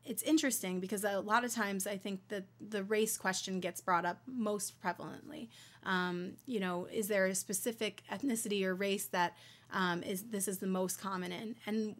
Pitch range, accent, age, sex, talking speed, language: 185-220 Hz, American, 20-39, female, 190 wpm, English